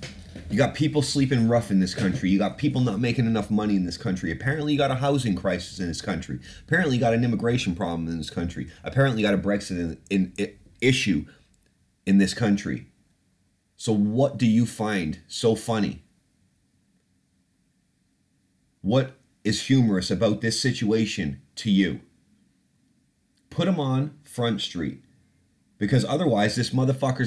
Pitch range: 90-115 Hz